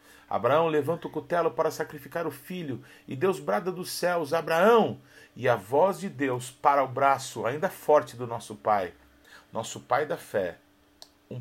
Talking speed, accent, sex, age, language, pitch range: 170 wpm, Brazilian, male, 50-69, Portuguese, 135-190 Hz